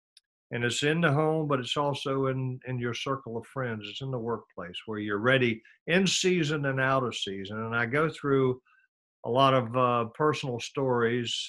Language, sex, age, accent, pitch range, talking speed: English, male, 50-69, American, 110-135 Hz, 195 wpm